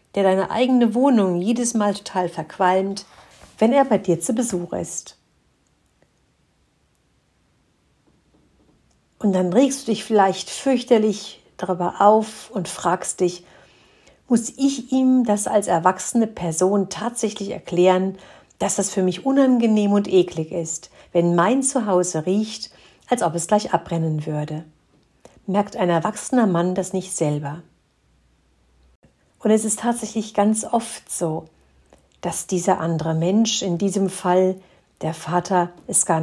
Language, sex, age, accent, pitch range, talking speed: German, female, 50-69, German, 170-215 Hz, 130 wpm